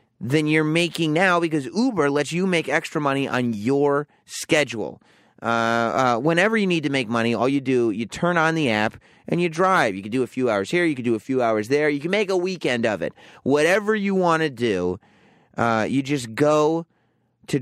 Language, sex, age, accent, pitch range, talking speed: English, male, 30-49, American, 115-160 Hz, 220 wpm